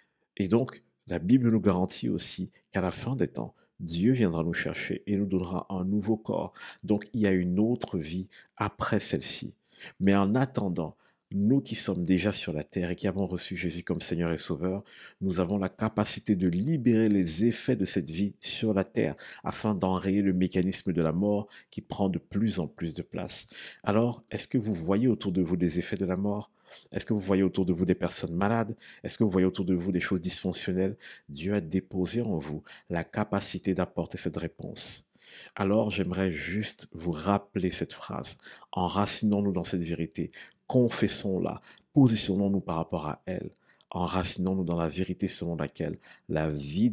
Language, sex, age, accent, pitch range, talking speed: French, male, 50-69, French, 90-105 Hz, 190 wpm